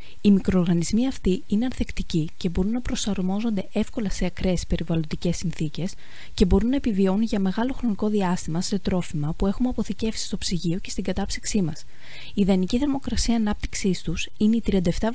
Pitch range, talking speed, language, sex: 180-220 Hz, 160 wpm, Greek, female